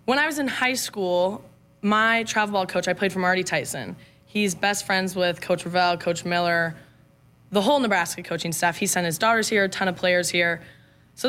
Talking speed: 205 wpm